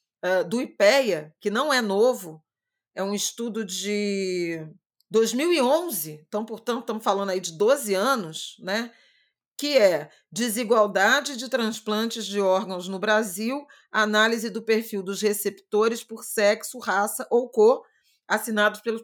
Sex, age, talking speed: female, 40-59, 130 wpm